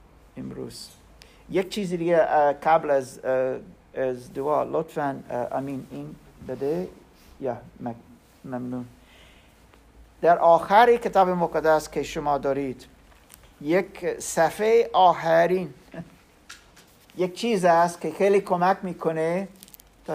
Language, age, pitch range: Persian, 50-69, 155-210 Hz